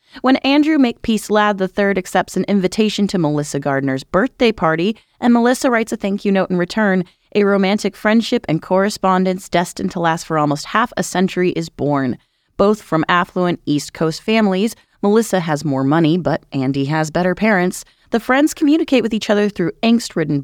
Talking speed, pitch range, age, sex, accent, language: 175 wpm, 165-220 Hz, 30-49, female, American, English